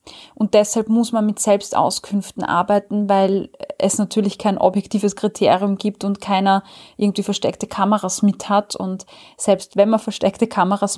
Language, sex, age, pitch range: German, female, 20-39, 200-235 Hz